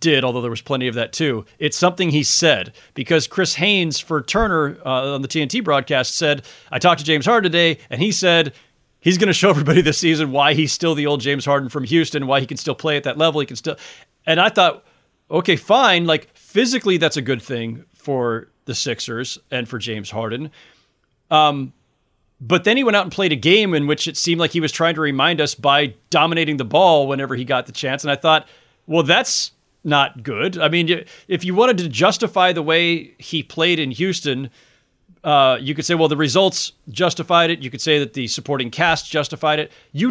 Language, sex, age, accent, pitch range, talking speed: English, male, 30-49, American, 140-175 Hz, 220 wpm